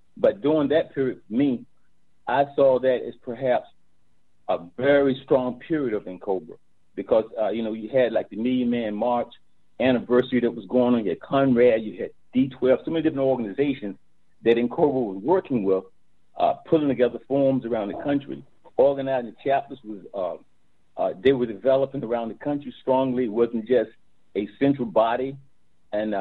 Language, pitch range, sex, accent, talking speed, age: English, 115-140 Hz, male, American, 170 wpm, 50-69